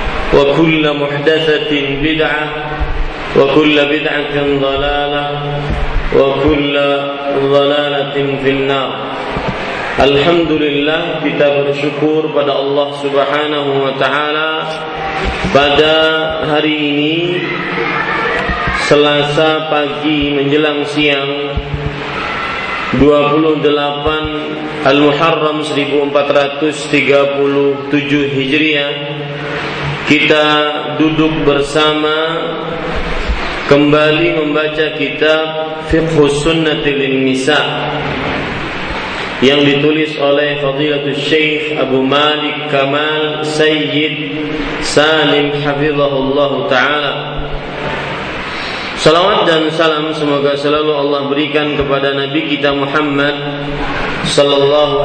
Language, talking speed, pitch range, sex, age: Malay, 70 wpm, 145-155 Hz, male, 30-49